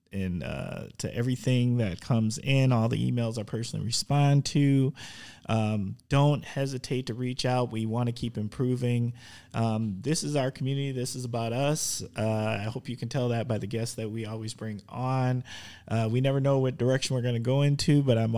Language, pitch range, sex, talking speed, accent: English, 110-135 Hz, male, 200 wpm, American